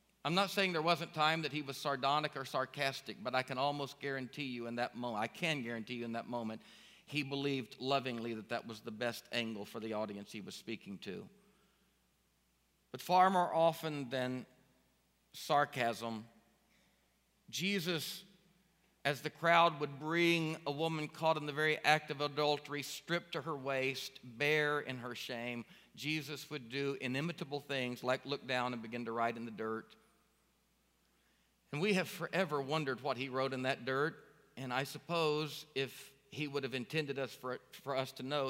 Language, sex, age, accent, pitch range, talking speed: English, male, 50-69, American, 125-160 Hz, 175 wpm